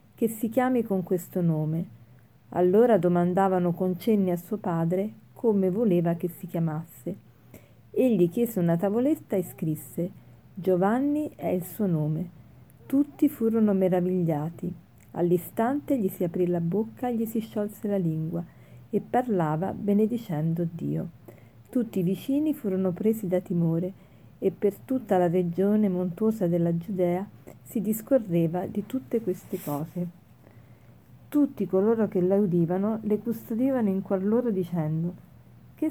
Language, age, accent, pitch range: Italian, 40-59, native, 170-215 Hz